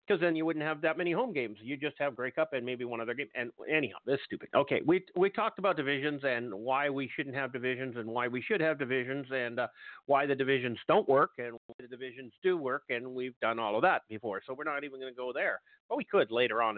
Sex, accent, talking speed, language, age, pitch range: male, American, 260 wpm, English, 50-69, 130-190 Hz